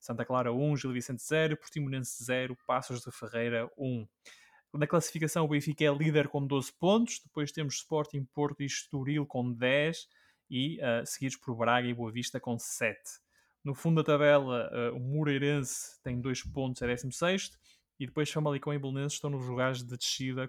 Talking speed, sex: 185 wpm, male